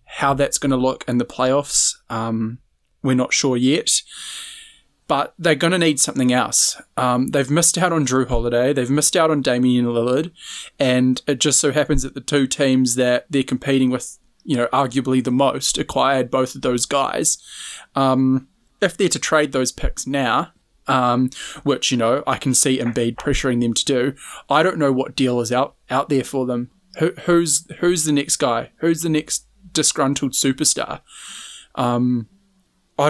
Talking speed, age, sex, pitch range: 180 wpm, 20-39, male, 130-160 Hz